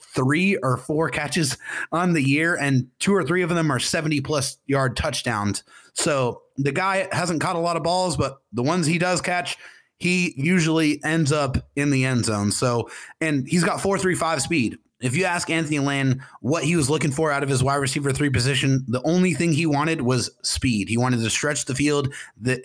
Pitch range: 125-160 Hz